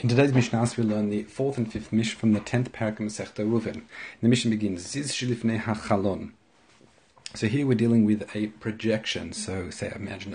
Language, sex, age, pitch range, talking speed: English, male, 30-49, 105-120 Hz, 170 wpm